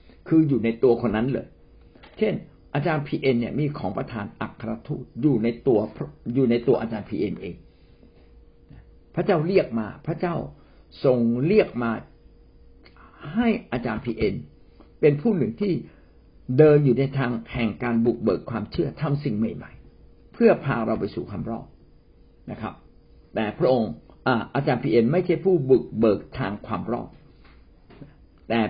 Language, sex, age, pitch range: Thai, male, 60-79, 105-155 Hz